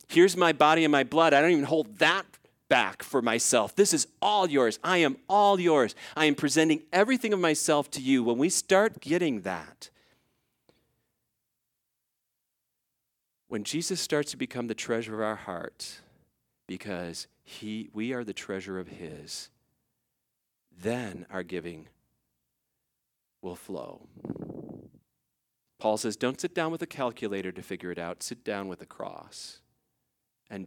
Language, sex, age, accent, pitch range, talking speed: English, male, 40-59, American, 100-145 Hz, 150 wpm